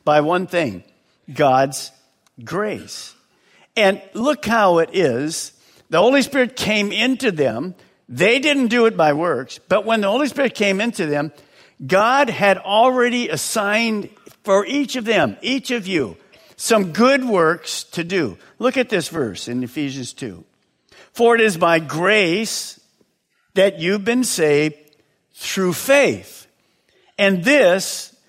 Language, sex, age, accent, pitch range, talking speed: English, male, 50-69, American, 165-235 Hz, 140 wpm